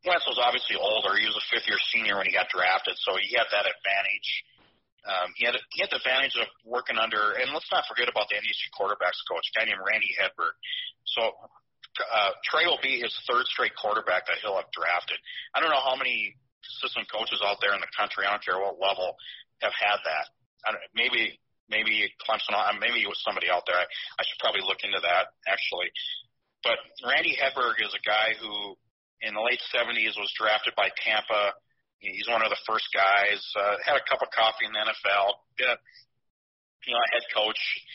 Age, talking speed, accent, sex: 40-59, 205 wpm, American, male